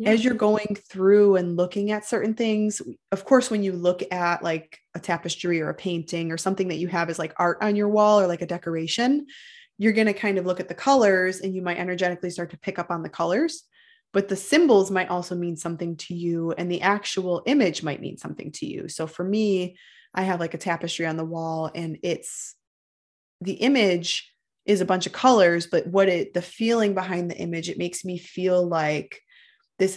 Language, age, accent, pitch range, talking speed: English, 20-39, American, 170-195 Hz, 215 wpm